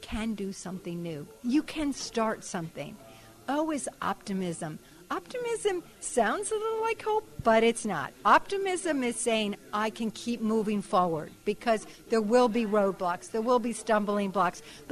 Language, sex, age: English, female, 50-69